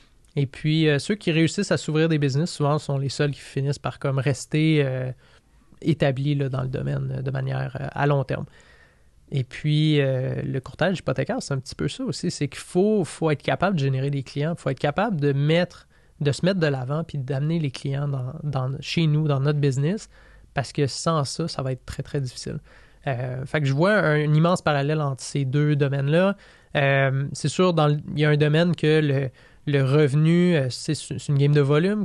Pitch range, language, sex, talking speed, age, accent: 135-155 Hz, French, male, 210 wpm, 20-39, Canadian